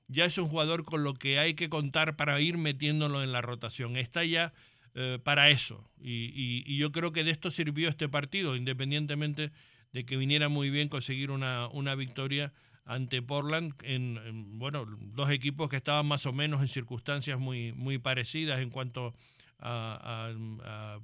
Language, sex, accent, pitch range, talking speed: English, male, Argentinian, 125-145 Hz, 175 wpm